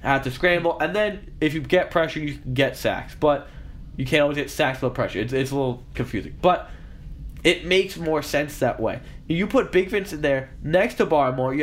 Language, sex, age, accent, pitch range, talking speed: English, male, 20-39, American, 145-190 Hz, 215 wpm